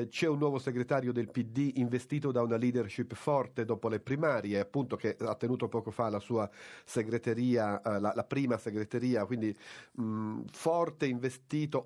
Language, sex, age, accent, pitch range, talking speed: Italian, male, 40-59, native, 115-150 Hz, 150 wpm